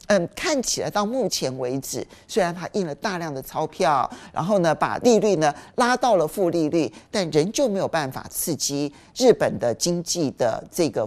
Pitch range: 155-260 Hz